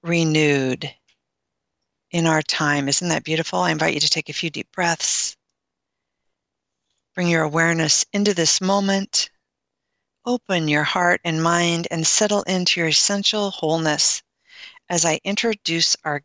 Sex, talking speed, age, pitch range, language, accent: female, 135 wpm, 50-69, 160-205 Hz, English, American